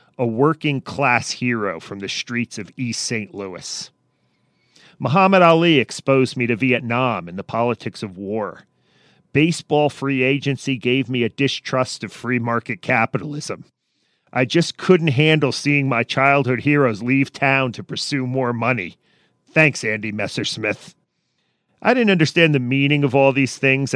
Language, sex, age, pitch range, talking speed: English, male, 40-59, 115-140 Hz, 145 wpm